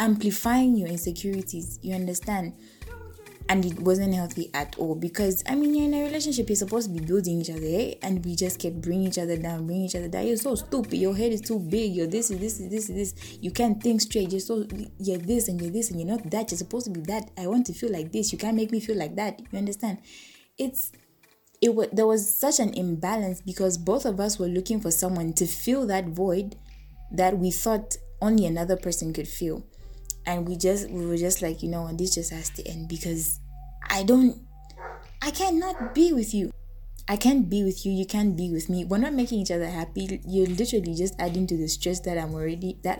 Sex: female